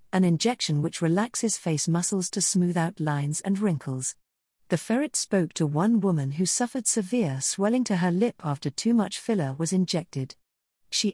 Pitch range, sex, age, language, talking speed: 160-210 Hz, female, 40-59, English, 170 wpm